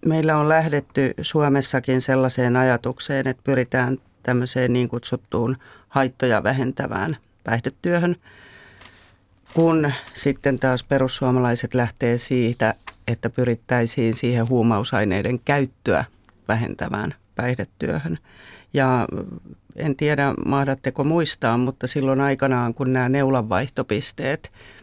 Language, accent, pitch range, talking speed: Finnish, native, 115-135 Hz, 90 wpm